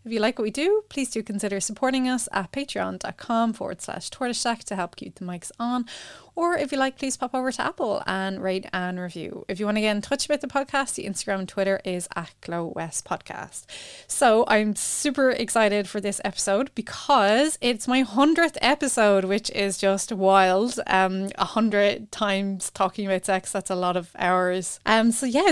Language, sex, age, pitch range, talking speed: English, female, 20-39, 195-245 Hz, 195 wpm